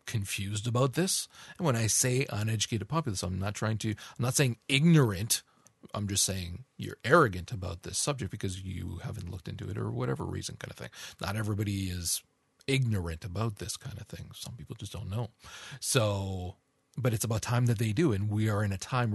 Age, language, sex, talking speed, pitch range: 40-59, English, male, 205 wpm, 95-125 Hz